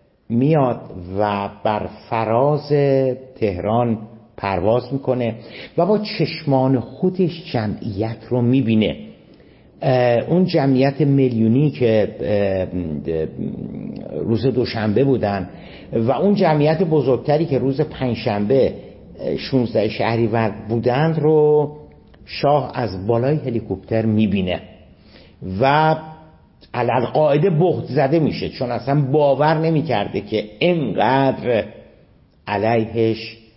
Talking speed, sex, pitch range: 90 wpm, male, 110-145 Hz